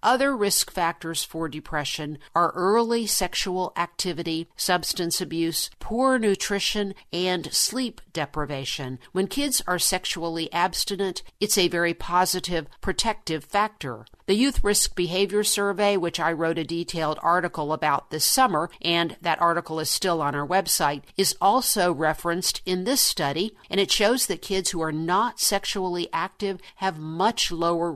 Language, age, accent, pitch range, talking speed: English, 50-69, American, 165-200 Hz, 145 wpm